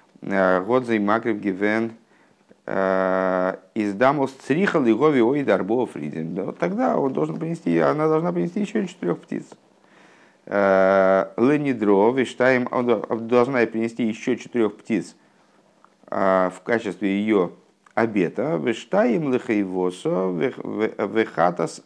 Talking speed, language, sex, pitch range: 95 wpm, Russian, male, 95-125 Hz